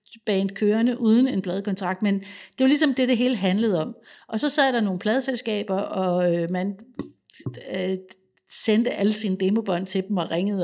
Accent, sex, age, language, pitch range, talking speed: native, female, 60-79, Danish, 195-240 Hz, 170 wpm